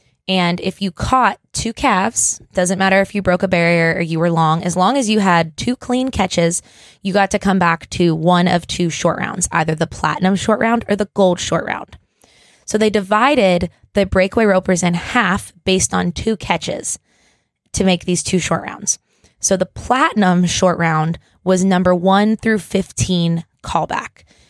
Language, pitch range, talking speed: English, 170-200 Hz, 185 wpm